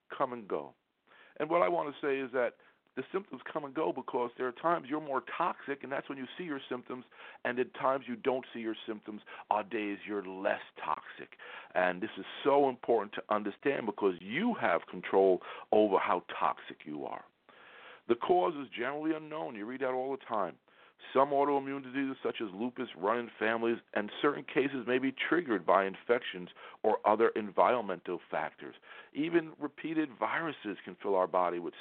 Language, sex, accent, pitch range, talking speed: English, male, American, 110-145 Hz, 185 wpm